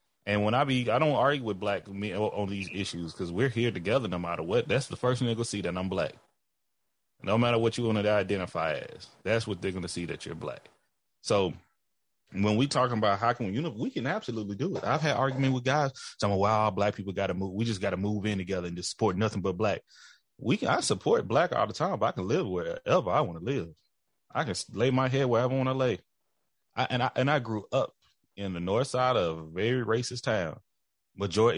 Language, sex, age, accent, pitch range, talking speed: English, male, 30-49, American, 100-125 Hz, 250 wpm